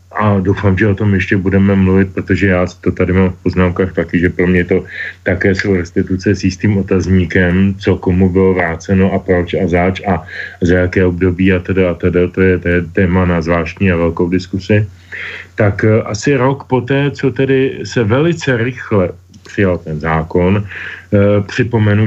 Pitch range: 95-105 Hz